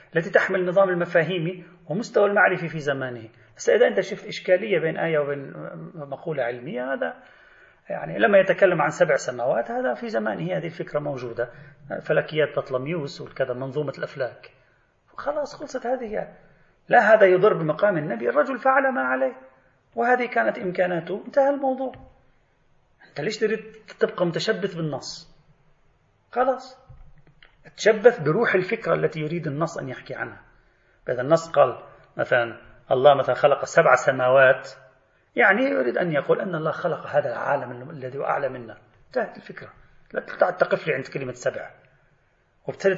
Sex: male